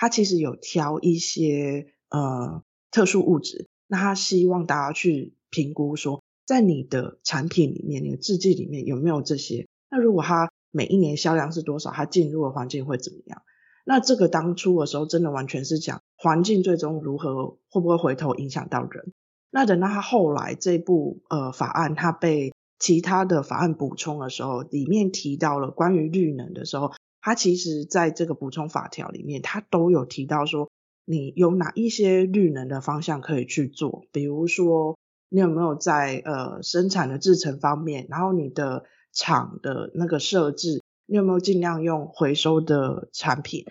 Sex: female